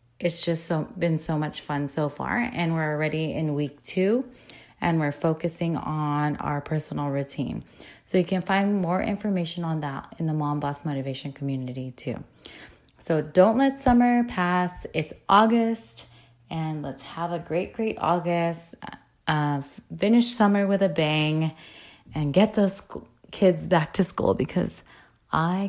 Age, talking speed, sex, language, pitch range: 30-49, 150 wpm, female, English, 155-200 Hz